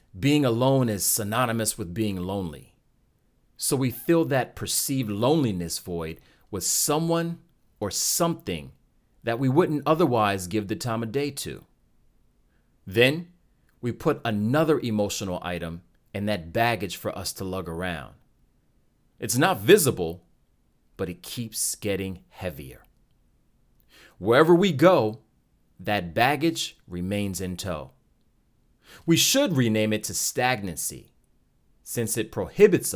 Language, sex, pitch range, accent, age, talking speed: English, male, 95-145 Hz, American, 40-59, 120 wpm